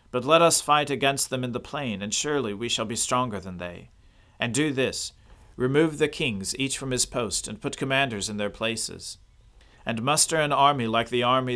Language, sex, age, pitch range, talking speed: English, male, 40-59, 110-130 Hz, 210 wpm